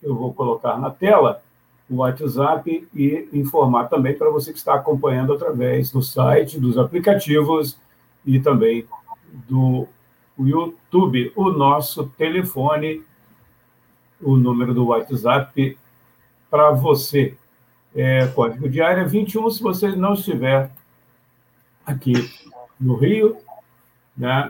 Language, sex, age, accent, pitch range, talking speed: Portuguese, male, 60-79, Brazilian, 125-185 Hz, 115 wpm